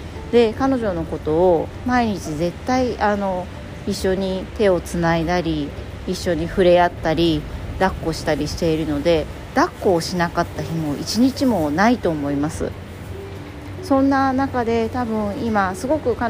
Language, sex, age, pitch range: Japanese, female, 40-59, 155-205 Hz